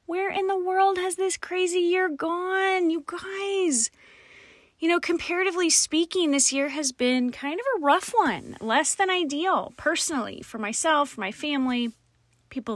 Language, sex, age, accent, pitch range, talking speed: English, female, 30-49, American, 175-275 Hz, 155 wpm